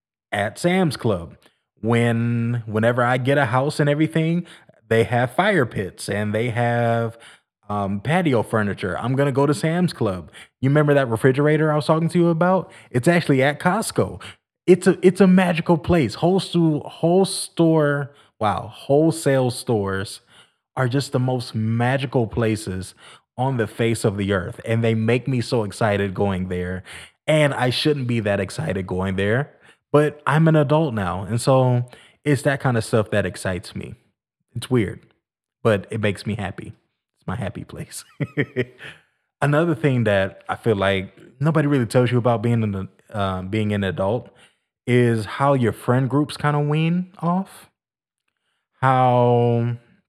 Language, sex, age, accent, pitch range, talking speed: English, male, 20-39, American, 105-150 Hz, 160 wpm